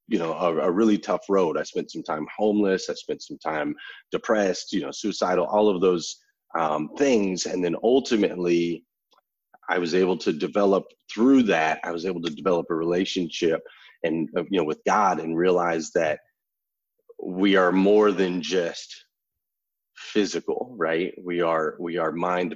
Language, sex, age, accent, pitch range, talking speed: English, male, 30-49, American, 90-115 Hz, 165 wpm